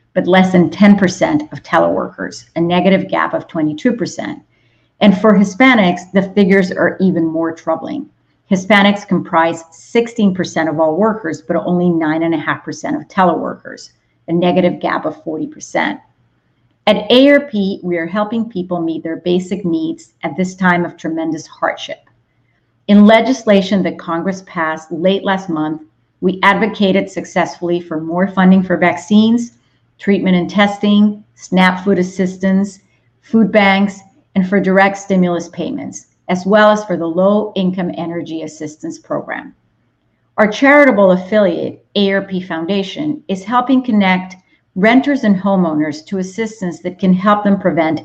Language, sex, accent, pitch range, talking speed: English, female, American, 170-205 Hz, 135 wpm